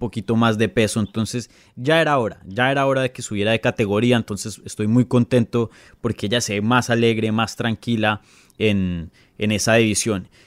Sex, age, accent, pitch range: male, 20-39, Colombian, 110-140 Hz